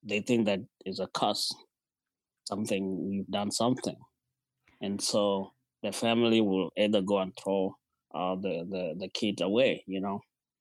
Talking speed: 155 wpm